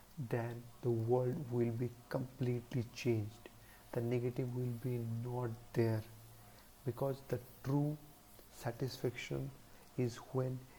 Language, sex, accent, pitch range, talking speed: English, male, Indian, 115-130 Hz, 105 wpm